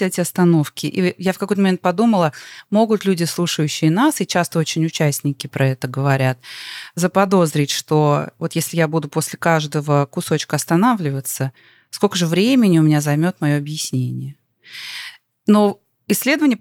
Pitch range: 140-185 Hz